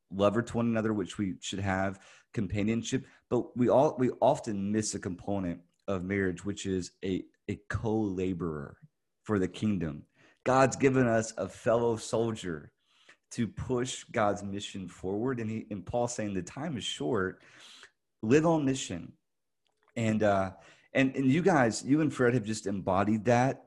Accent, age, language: American, 30-49, English